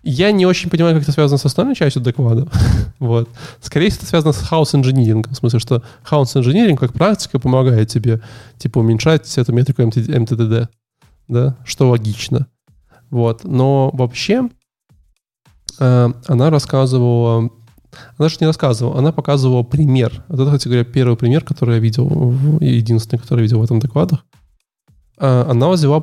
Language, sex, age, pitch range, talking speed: Russian, male, 20-39, 120-145 Hz, 150 wpm